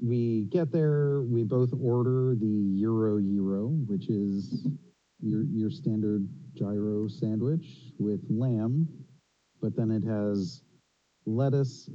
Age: 40-59